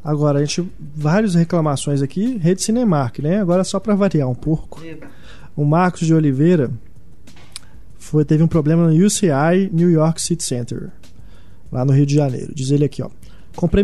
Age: 20-39